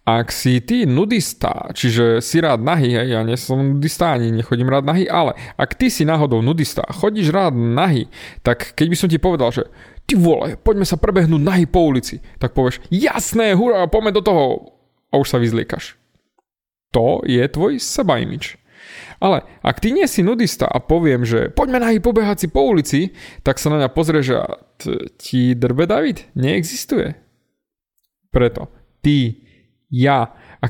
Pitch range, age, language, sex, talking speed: 125-185 Hz, 30-49, Slovak, male, 170 wpm